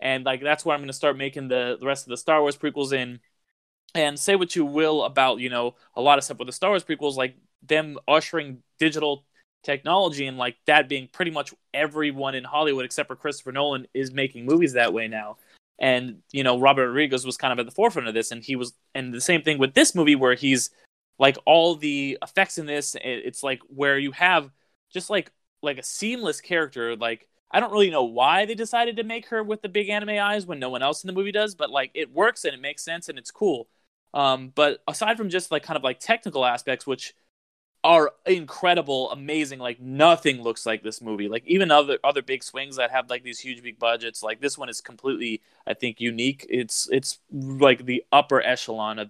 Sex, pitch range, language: male, 125-155 Hz, English